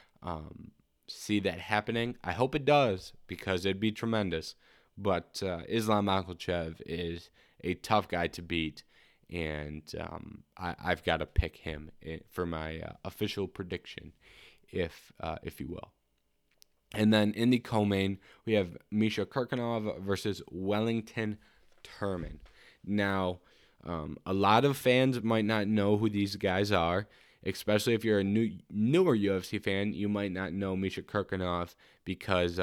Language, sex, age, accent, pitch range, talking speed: English, male, 20-39, American, 85-105 Hz, 145 wpm